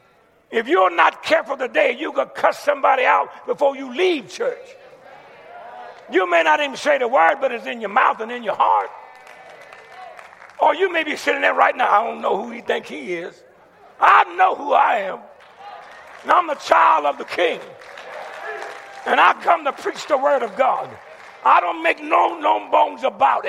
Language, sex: English, male